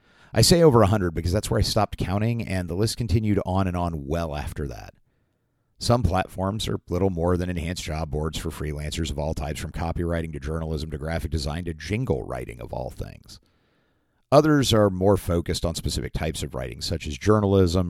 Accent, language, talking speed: American, English, 200 wpm